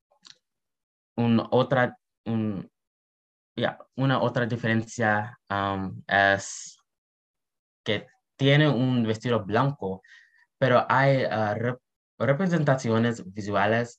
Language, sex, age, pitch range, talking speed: Spanish, male, 20-39, 105-125 Hz, 85 wpm